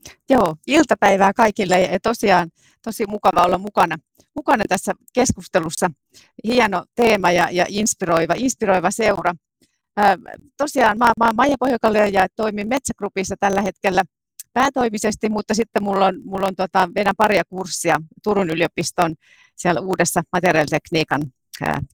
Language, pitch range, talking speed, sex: Finnish, 175-225 Hz, 130 wpm, female